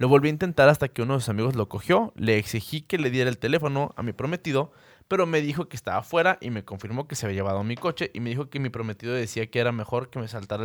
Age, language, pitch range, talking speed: 20-39, Spanish, 115-145 Hz, 280 wpm